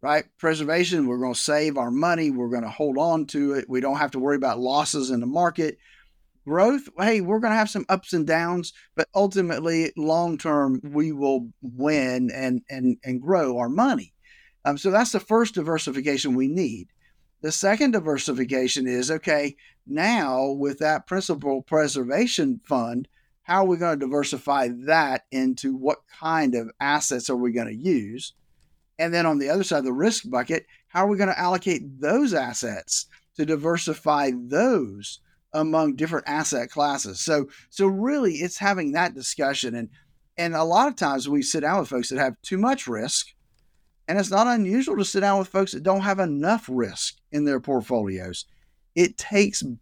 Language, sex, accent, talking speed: English, male, American, 180 wpm